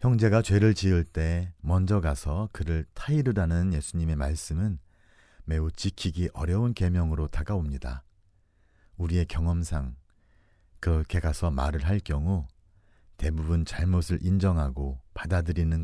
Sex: male